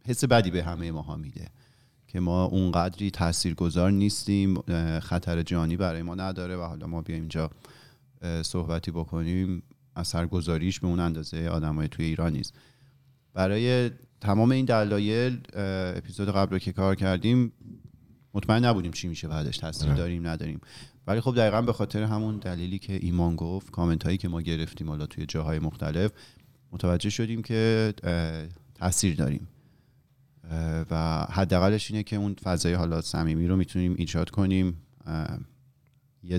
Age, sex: 40-59, male